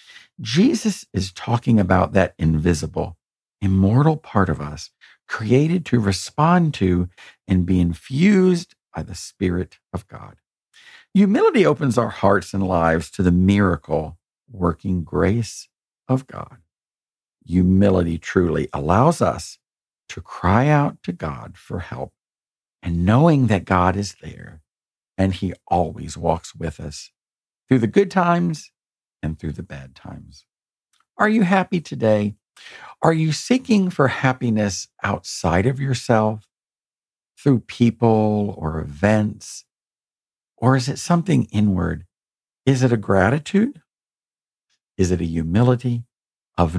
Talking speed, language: 125 wpm, English